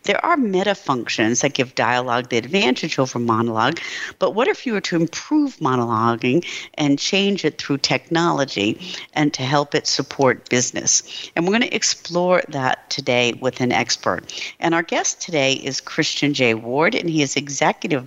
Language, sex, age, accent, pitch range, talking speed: English, female, 50-69, American, 125-165 Hz, 175 wpm